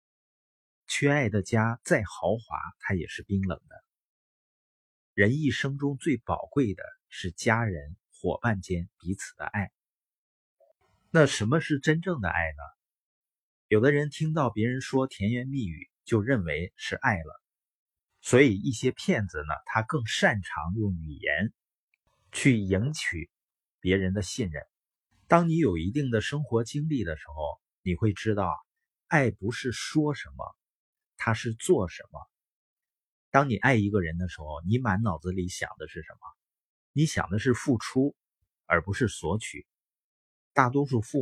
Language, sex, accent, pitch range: Chinese, male, native, 95-135 Hz